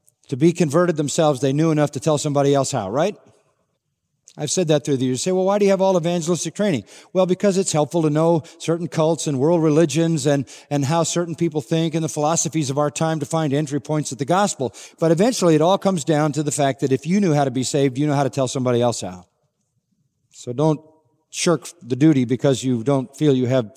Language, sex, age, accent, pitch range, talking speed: English, male, 50-69, American, 140-180 Hz, 240 wpm